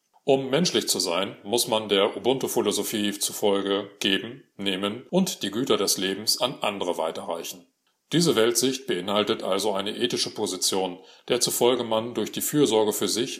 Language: English